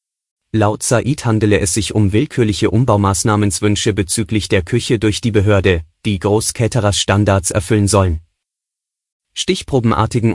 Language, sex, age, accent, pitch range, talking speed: German, male, 30-49, German, 100-120 Hz, 115 wpm